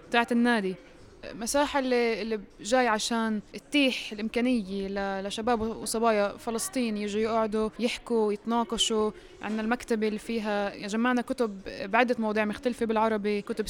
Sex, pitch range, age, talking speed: female, 215-240 Hz, 20-39, 115 wpm